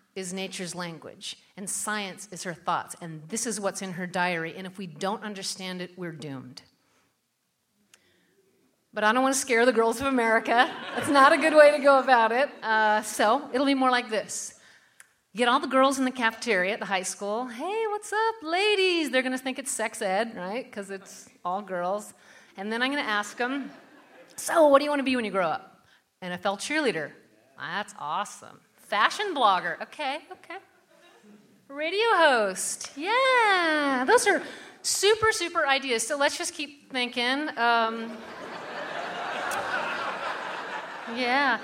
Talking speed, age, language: 165 wpm, 40-59, English